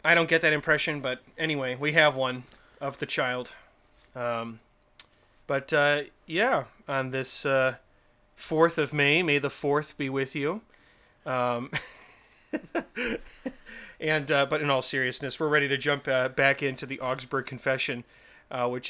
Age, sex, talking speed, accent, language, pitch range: 30-49, male, 150 wpm, American, English, 125-150 Hz